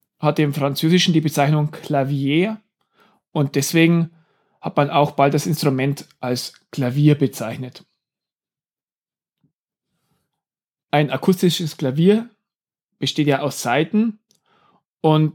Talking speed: 100 wpm